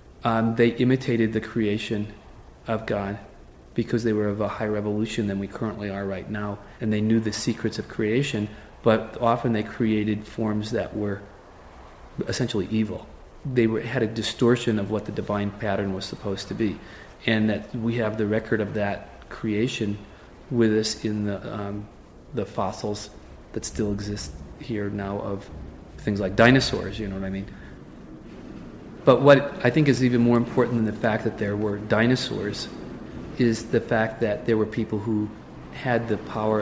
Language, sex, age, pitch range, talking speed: English, male, 30-49, 105-120 Hz, 170 wpm